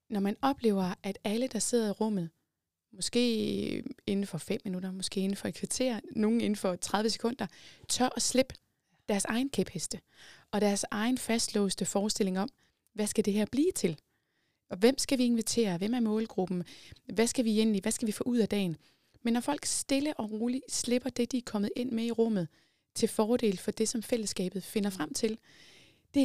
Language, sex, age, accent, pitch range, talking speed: Danish, female, 20-39, native, 200-245 Hz, 200 wpm